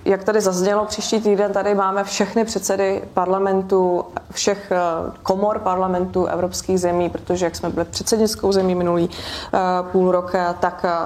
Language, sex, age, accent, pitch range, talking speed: Czech, female, 20-39, native, 180-210 Hz, 135 wpm